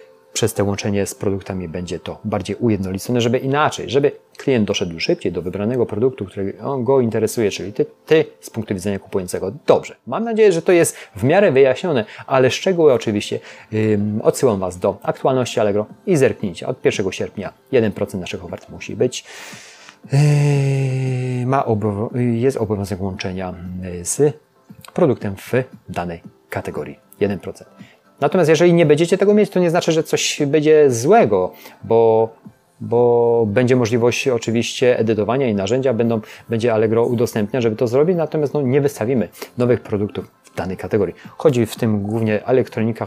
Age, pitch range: 30-49, 105-135 Hz